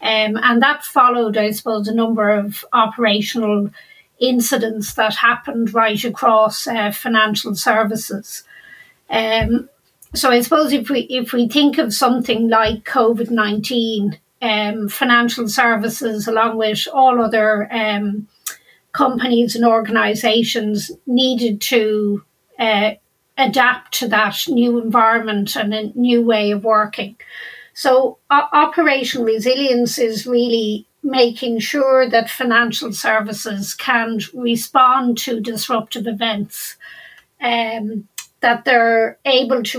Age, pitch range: 40-59, 220-255 Hz